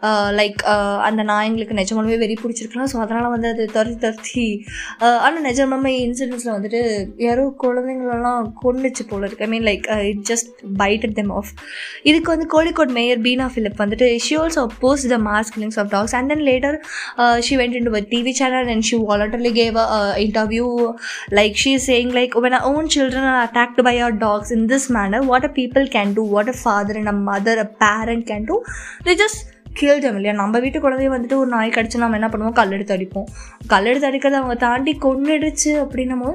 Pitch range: 215-265 Hz